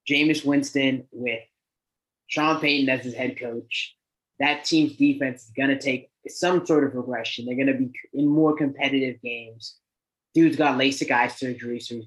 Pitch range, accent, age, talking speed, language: 125-150 Hz, American, 20-39, 175 wpm, English